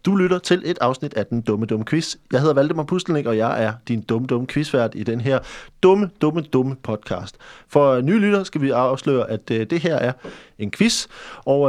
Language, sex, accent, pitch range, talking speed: Danish, male, native, 120-155 Hz, 210 wpm